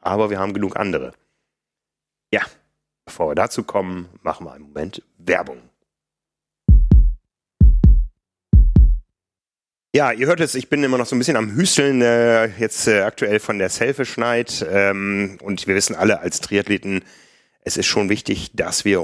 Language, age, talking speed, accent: German, 40-59, 155 wpm, German